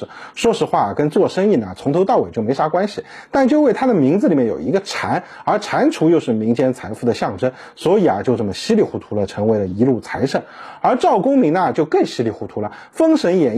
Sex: male